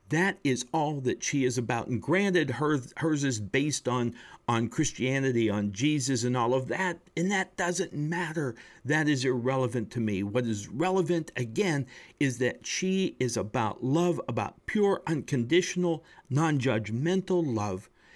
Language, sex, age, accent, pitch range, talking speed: English, male, 50-69, American, 115-145 Hz, 150 wpm